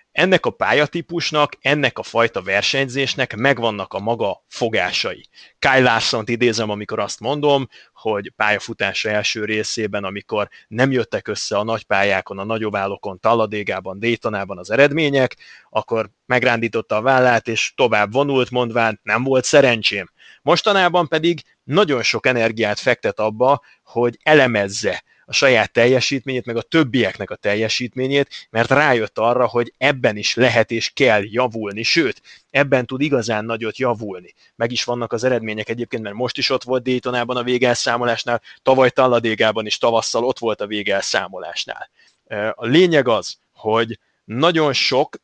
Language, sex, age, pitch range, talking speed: Hungarian, male, 30-49, 110-130 Hz, 140 wpm